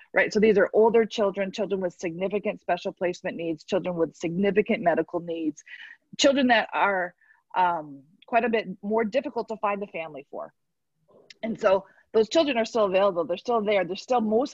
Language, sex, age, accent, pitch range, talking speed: English, female, 30-49, American, 175-220 Hz, 180 wpm